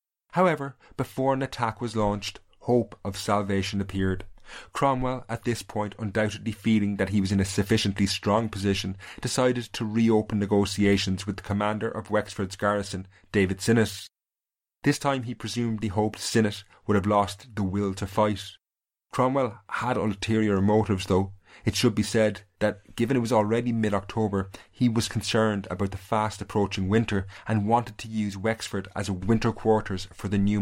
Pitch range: 100-115 Hz